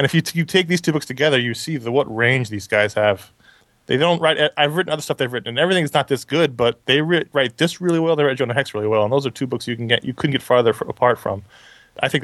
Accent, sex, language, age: American, male, English, 20-39